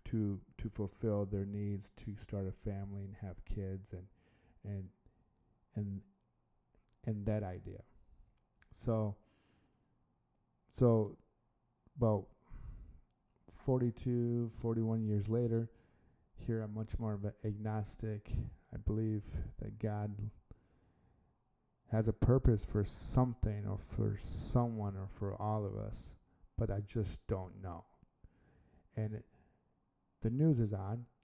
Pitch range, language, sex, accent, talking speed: 100-110 Hz, English, male, American, 115 wpm